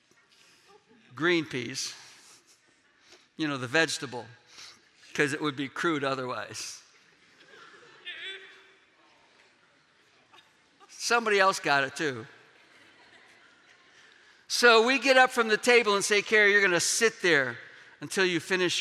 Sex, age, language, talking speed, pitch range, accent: male, 60-79, English, 110 wpm, 170-200 Hz, American